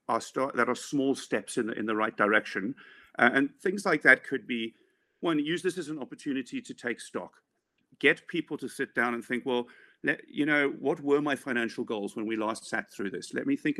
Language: English